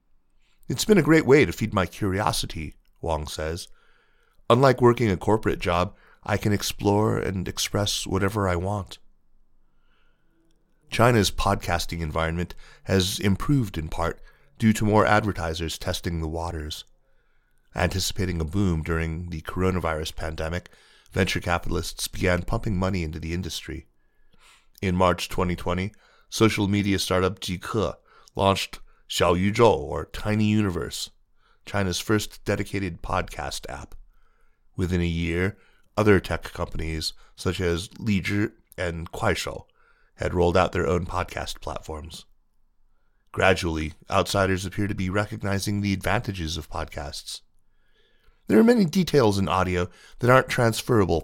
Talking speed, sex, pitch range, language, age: 130 wpm, male, 85-105 Hz, English, 30-49